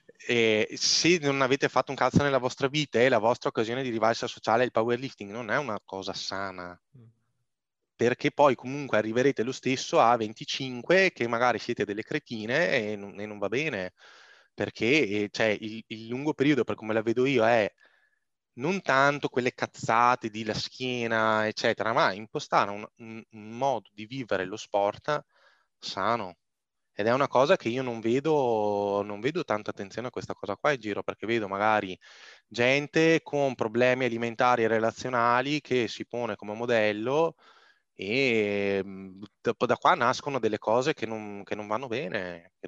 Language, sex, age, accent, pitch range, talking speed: Italian, male, 20-39, native, 100-130 Hz, 170 wpm